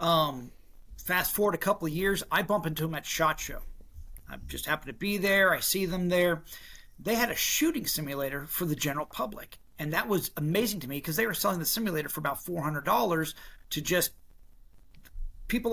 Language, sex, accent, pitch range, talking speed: English, male, American, 150-190 Hz, 195 wpm